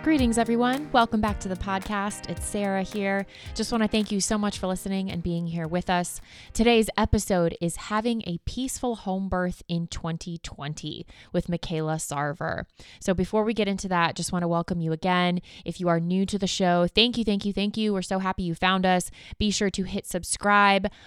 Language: English